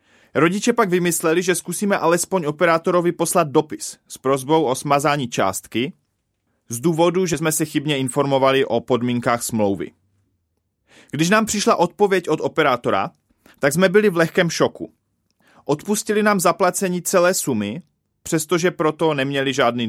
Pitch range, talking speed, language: 125-180 Hz, 135 wpm, Czech